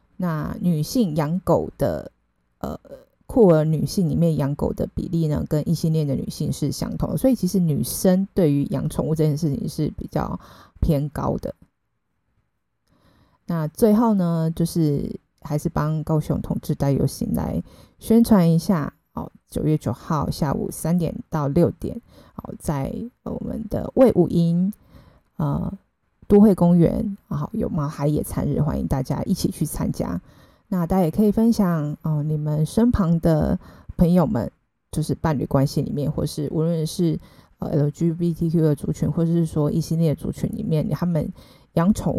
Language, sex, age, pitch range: Chinese, female, 20-39, 155-185 Hz